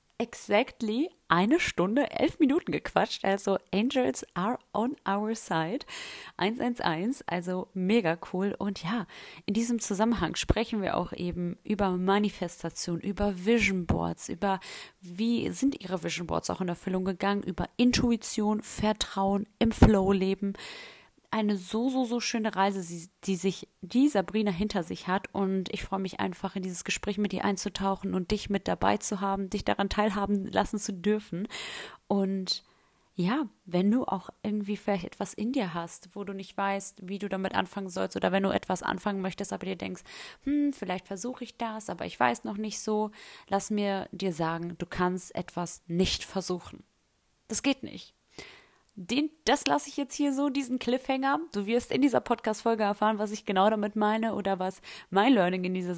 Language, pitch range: German, 190-230 Hz